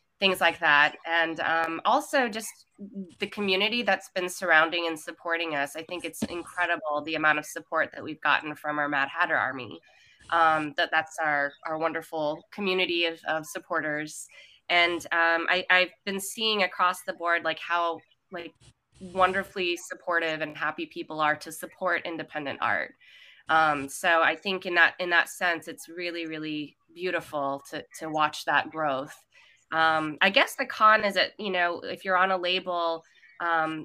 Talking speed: 170 wpm